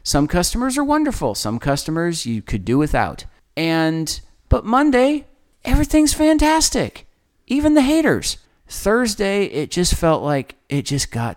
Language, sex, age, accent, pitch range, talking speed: English, male, 40-59, American, 115-165 Hz, 135 wpm